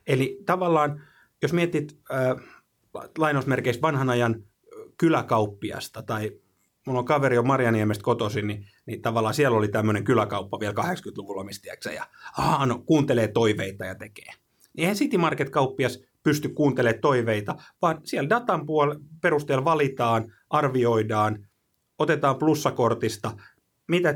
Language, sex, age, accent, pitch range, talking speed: Finnish, male, 30-49, native, 115-155 Hz, 120 wpm